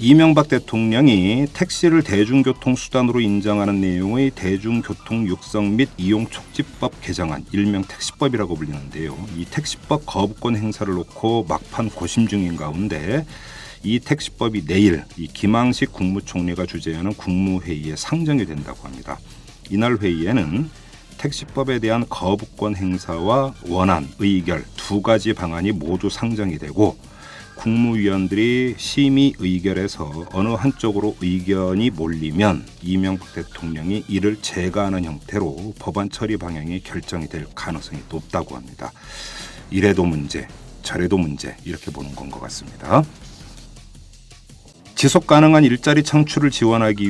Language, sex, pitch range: Korean, male, 90-115 Hz